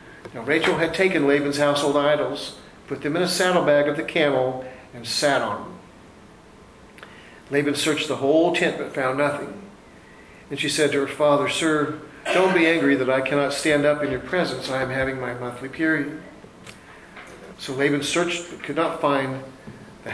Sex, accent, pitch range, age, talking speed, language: male, American, 135-155 Hz, 50-69, 175 wpm, English